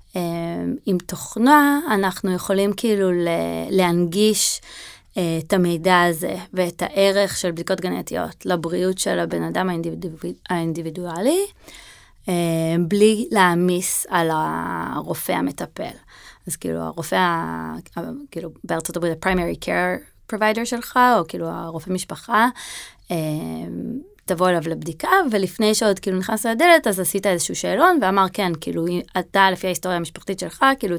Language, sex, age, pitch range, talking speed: Hebrew, female, 20-39, 170-210 Hz, 115 wpm